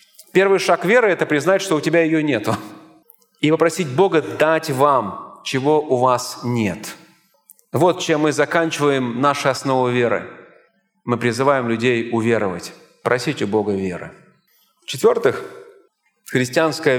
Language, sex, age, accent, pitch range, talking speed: Russian, male, 30-49, native, 130-185 Hz, 130 wpm